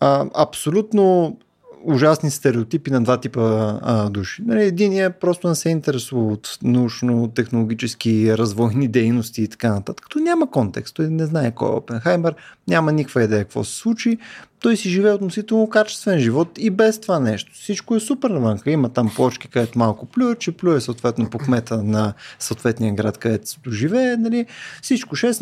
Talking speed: 165 wpm